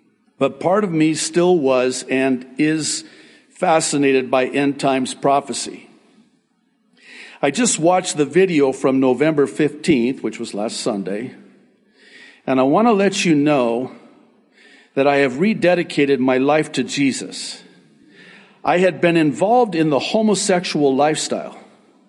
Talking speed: 130 wpm